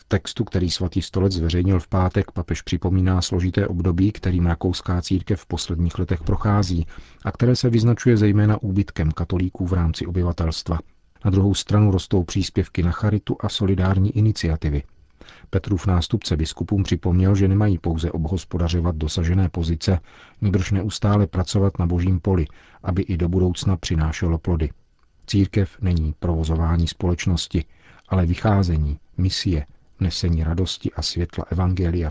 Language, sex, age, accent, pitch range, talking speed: Czech, male, 40-59, native, 85-95 Hz, 135 wpm